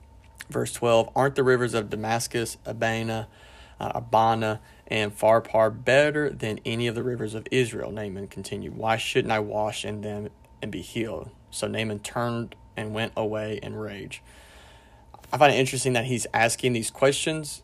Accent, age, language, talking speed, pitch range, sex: American, 30-49, English, 165 wpm, 105-120 Hz, male